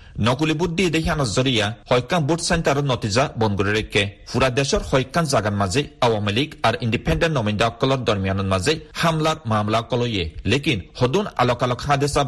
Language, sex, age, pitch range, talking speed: Bengali, male, 40-59, 110-155 Hz, 135 wpm